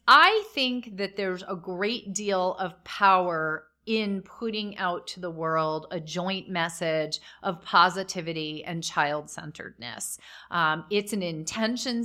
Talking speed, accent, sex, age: 125 wpm, American, female, 30-49